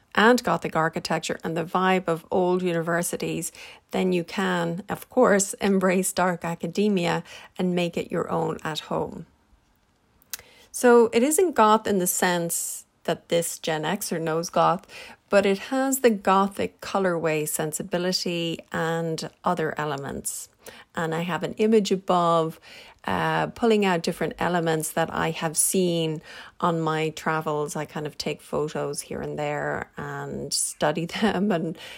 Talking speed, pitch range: 145 wpm, 165-195 Hz